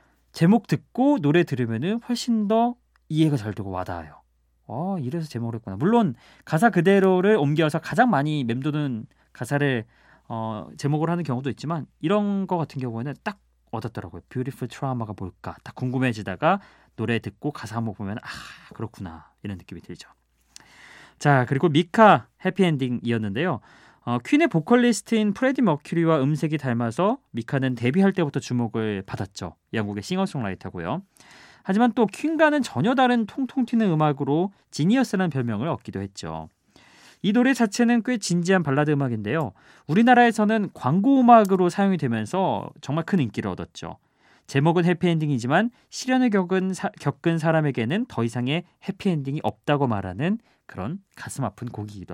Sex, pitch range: male, 115-195 Hz